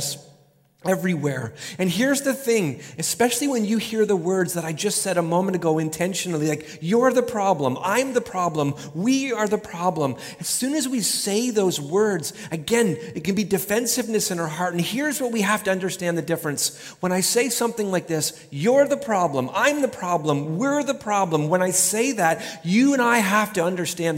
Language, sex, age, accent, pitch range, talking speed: English, male, 40-59, American, 150-210 Hz, 195 wpm